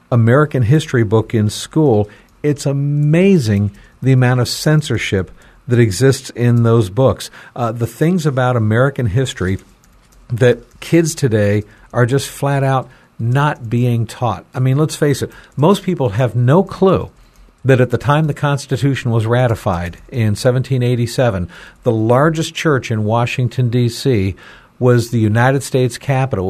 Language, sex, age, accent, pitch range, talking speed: English, male, 50-69, American, 120-150 Hz, 145 wpm